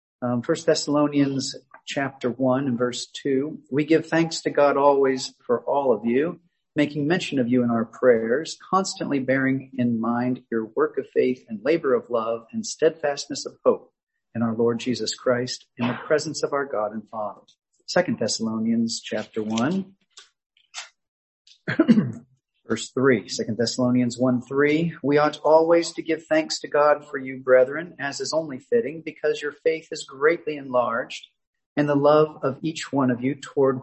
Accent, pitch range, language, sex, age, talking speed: American, 125-160 Hz, English, male, 40-59, 165 wpm